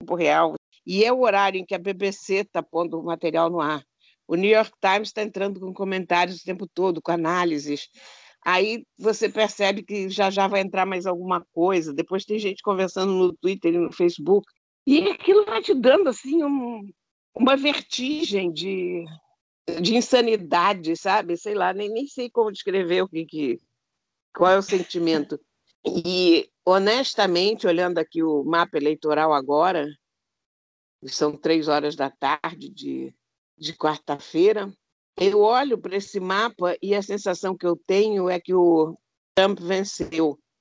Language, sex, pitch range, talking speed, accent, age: Portuguese, female, 165-210 Hz, 160 wpm, Brazilian, 60-79